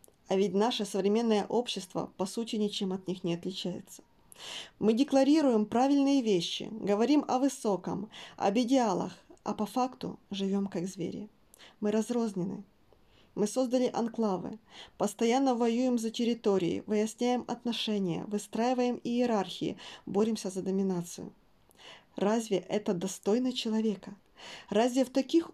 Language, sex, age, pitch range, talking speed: Russian, female, 20-39, 195-235 Hz, 115 wpm